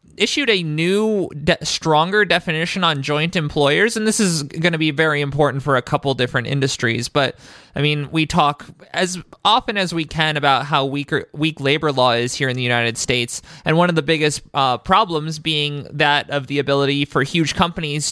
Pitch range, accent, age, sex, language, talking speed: 140-175 Hz, American, 20-39, male, English, 195 wpm